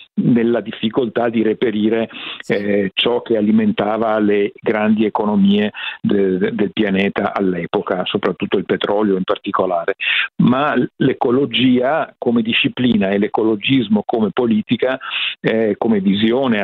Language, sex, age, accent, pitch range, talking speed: Italian, male, 50-69, native, 105-125 Hz, 110 wpm